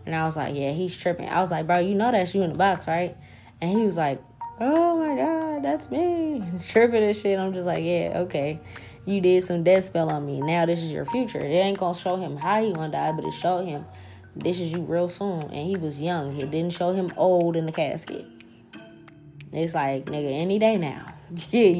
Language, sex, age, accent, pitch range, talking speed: English, female, 10-29, American, 155-200 Hz, 240 wpm